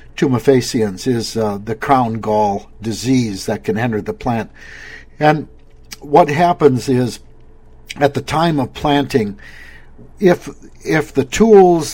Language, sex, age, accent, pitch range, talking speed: English, male, 60-79, American, 110-145 Hz, 120 wpm